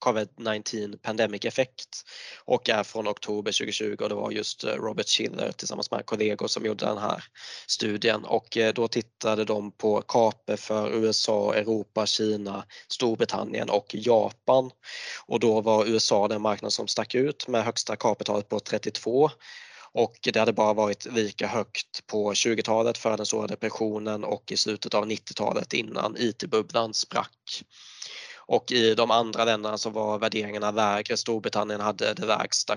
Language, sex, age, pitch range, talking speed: Swedish, male, 20-39, 105-110 Hz, 150 wpm